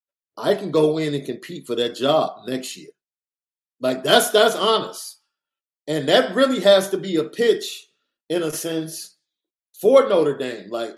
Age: 40-59